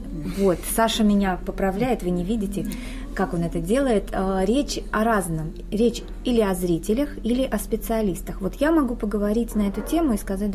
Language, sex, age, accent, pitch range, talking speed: Russian, female, 20-39, native, 190-230 Hz, 170 wpm